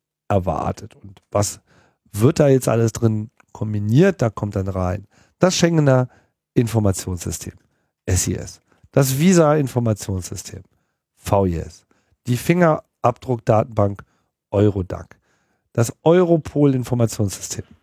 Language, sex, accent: German, male, German